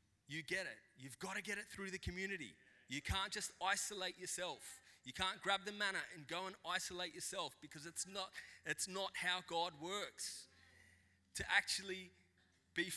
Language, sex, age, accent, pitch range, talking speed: English, male, 30-49, Australian, 100-165 Hz, 170 wpm